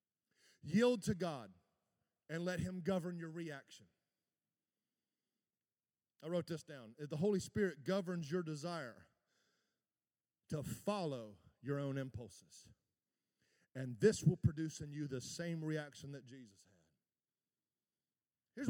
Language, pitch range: English, 145-205 Hz